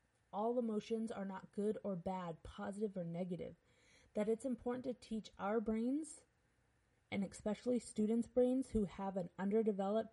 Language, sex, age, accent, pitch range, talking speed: English, female, 30-49, American, 190-240 Hz, 150 wpm